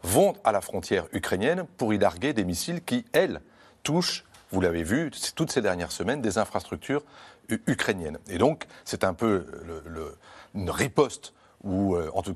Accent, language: French, French